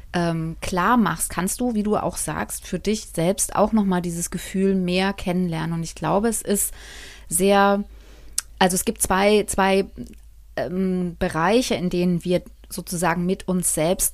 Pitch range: 185-230 Hz